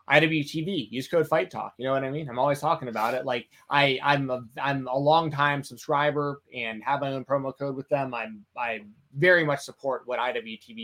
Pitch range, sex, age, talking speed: 115-145 Hz, male, 20-39, 210 wpm